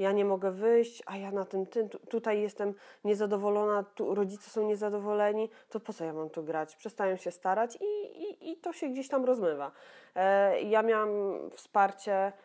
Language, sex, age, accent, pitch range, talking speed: Polish, female, 20-39, native, 195-235 Hz, 185 wpm